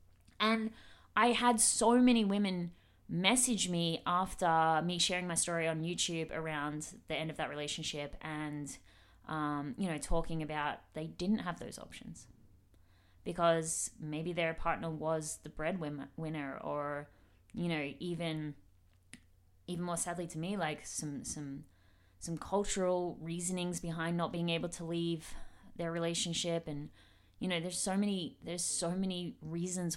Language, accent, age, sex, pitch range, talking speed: English, Australian, 20-39, female, 115-180 Hz, 145 wpm